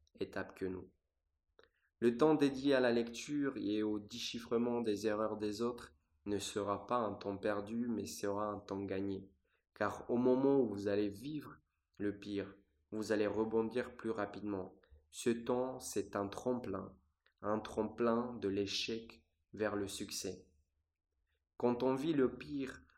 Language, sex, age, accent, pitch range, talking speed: French, male, 20-39, French, 95-120 Hz, 150 wpm